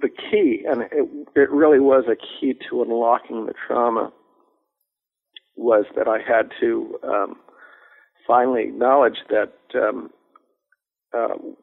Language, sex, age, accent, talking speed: English, male, 50-69, American, 125 wpm